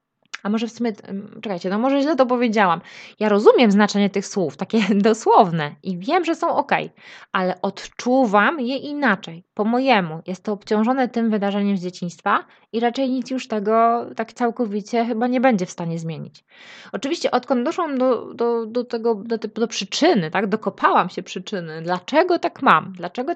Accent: native